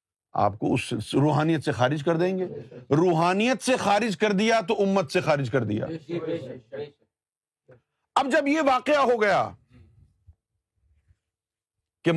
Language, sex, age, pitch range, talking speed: Urdu, male, 50-69, 135-210 Hz, 135 wpm